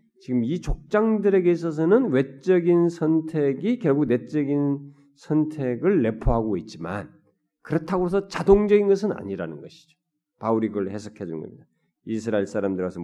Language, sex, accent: Korean, male, native